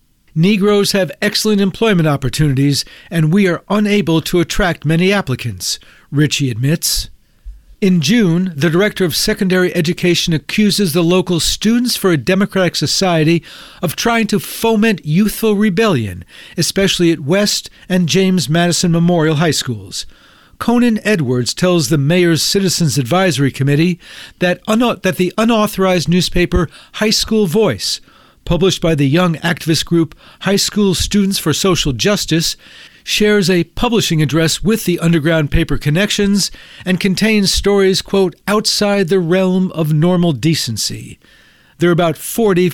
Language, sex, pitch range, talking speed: English, male, 160-200 Hz, 135 wpm